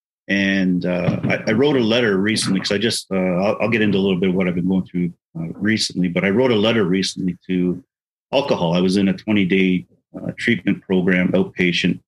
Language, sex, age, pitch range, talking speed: English, male, 40-59, 90-110 Hz, 215 wpm